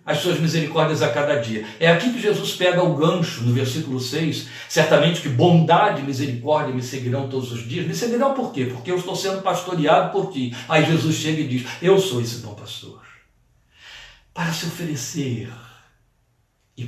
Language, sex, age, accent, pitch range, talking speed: Portuguese, male, 60-79, Brazilian, 125-180 Hz, 180 wpm